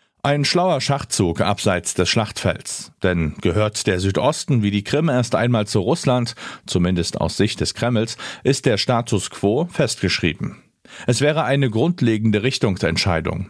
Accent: German